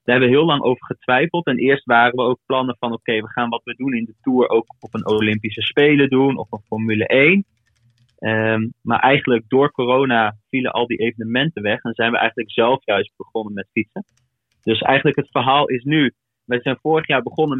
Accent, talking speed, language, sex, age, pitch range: Dutch, 210 wpm, Dutch, male, 30-49, 115-135 Hz